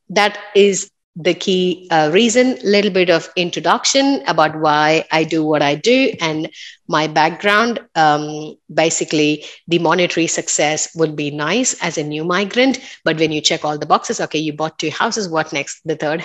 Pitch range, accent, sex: 155-205 Hz, Indian, female